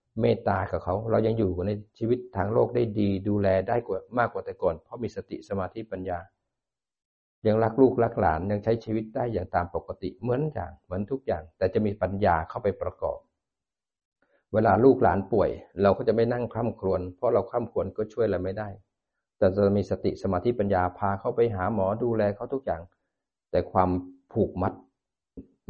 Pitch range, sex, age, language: 90-110 Hz, male, 60-79, Thai